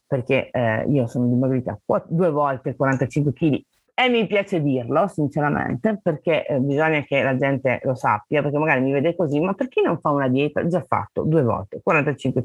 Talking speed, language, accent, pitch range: 190 wpm, Italian, native, 135-190 Hz